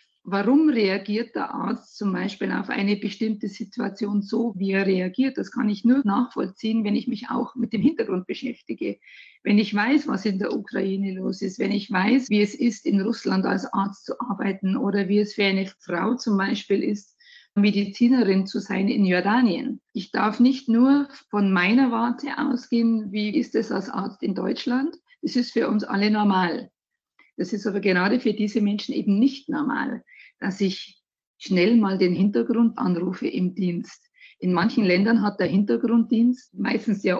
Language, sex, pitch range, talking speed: German, female, 200-255 Hz, 175 wpm